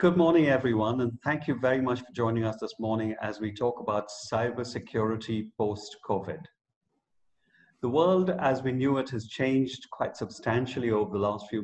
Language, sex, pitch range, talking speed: English, male, 110-135 Hz, 170 wpm